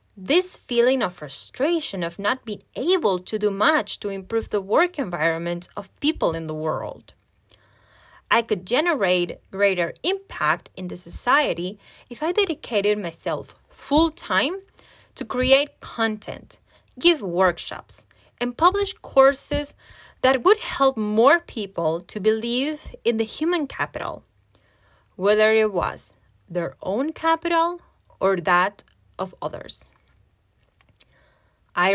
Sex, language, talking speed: female, English, 120 wpm